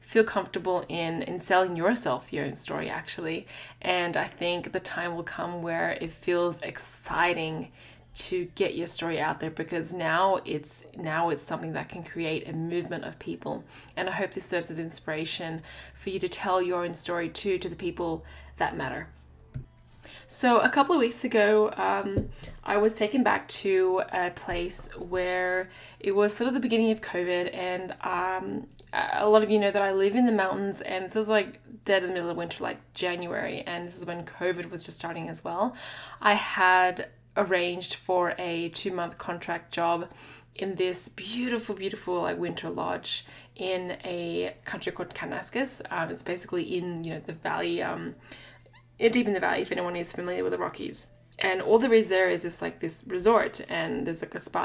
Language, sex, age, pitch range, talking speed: English, female, 20-39, 170-200 Hz, 190 wpm